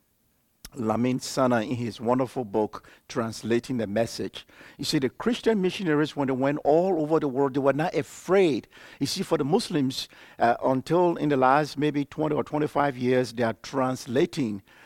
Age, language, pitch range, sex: 50-69, English, 125-170 Hz, male